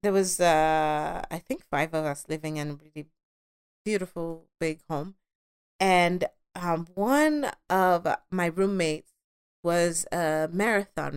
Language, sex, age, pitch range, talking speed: English, female, 30-49, 155-195 Hz, 130 wpm